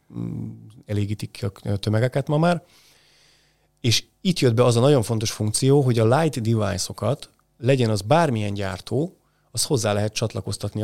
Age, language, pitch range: 30-49, Hungarian, 105-135 Hz